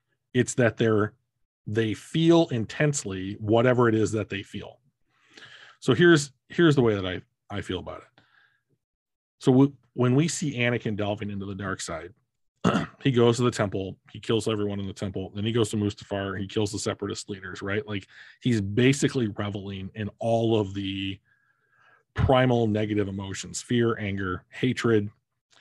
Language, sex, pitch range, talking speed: English, male, 100-125 Hz, 160 wpm